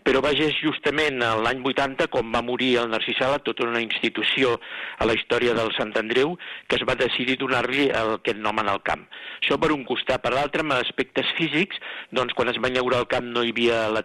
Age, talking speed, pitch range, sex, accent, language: 50-69, 210 wpm, 115-145 Hz, male, Spanish, English